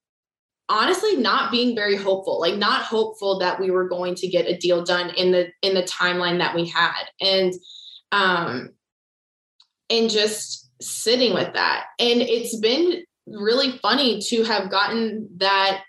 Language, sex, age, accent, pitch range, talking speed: English, female, 20-39, American, 175-215 Hz, 155 wpm